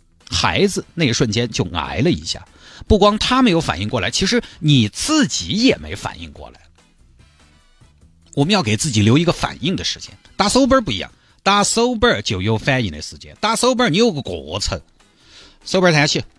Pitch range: 90-150 Hz